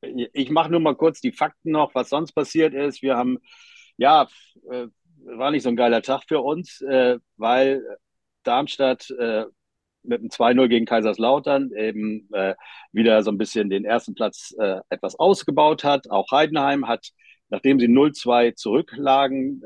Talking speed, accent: 145 wpm, German